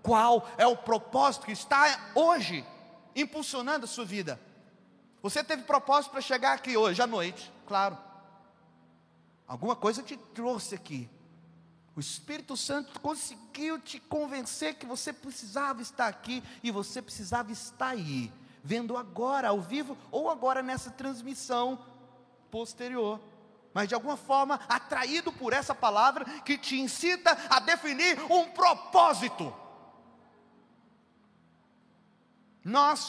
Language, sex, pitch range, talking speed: Portuguese, male, 205-280 Hz, 120 wpm